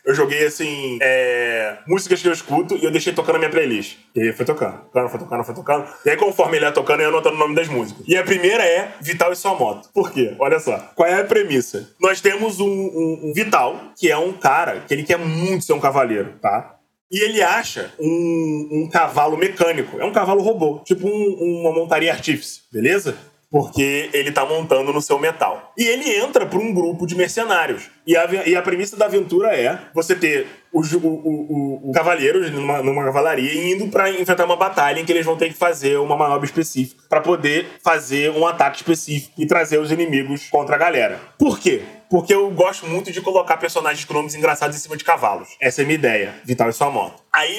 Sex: male